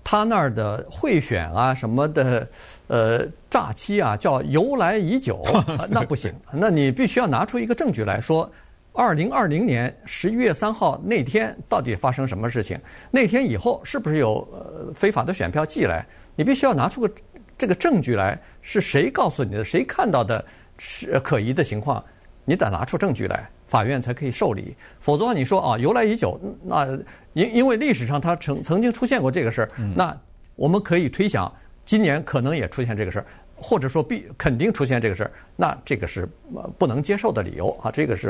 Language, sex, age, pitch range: Chinese, male, 50-69, 115-190 Hz